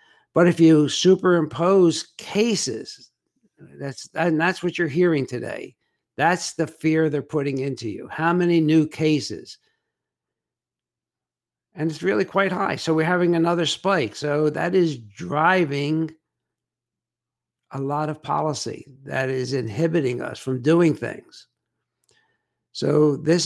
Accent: American